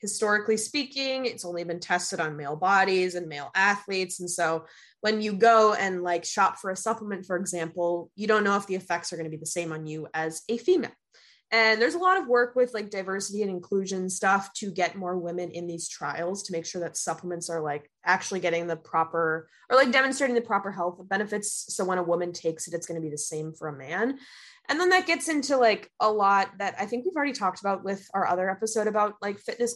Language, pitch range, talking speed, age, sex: English, 180-235 Hz, 235 wpm, 20-39, female